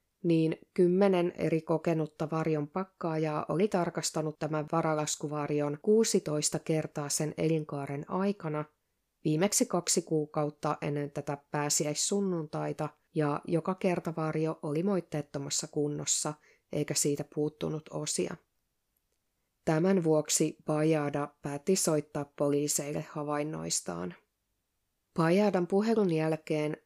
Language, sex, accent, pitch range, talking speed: Finnish, female, native, 150-170 Hz, 95 wpm